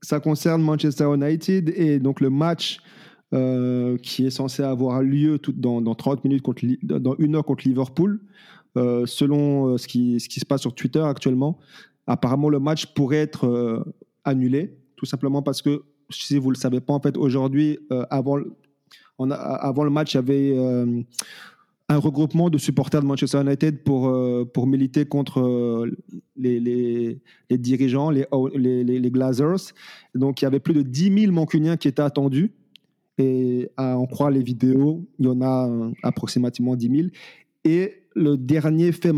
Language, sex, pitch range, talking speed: French, male, 130-155 Hz, 180 wpm